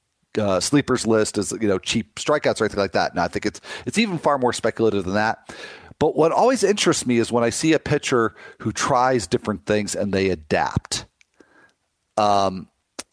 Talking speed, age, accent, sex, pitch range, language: 190 wpm, 40-59, American, male, 105-145 Hz, English